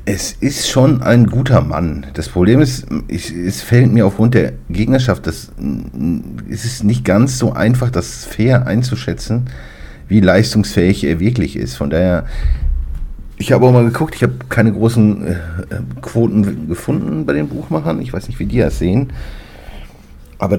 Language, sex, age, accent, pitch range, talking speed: German, male, 50-69, German, 80-120 Hz, 155 wpm